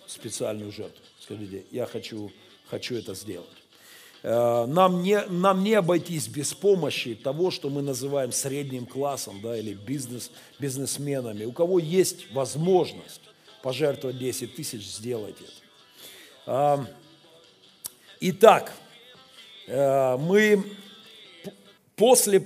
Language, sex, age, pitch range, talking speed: Russian, male, 50-69, 130-175 Hz, 90 wpm